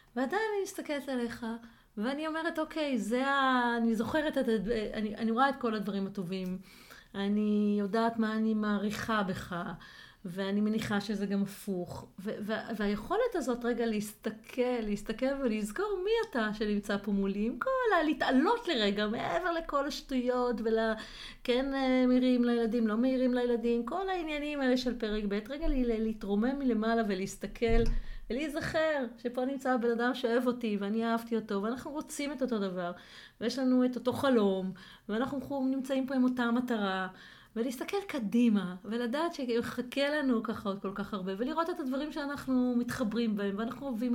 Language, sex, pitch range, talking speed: Hebrew, female, 215-270 Hz, 155 wpm